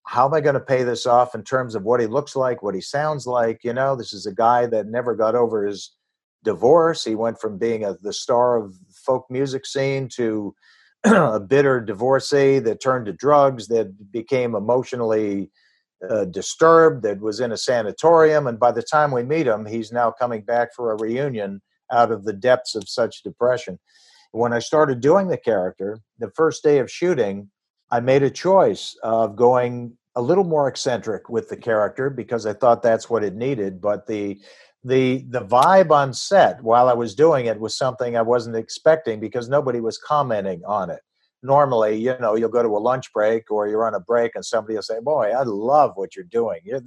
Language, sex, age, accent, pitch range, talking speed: English, male, 50-69, American, 115-145 Hz, 200 wpm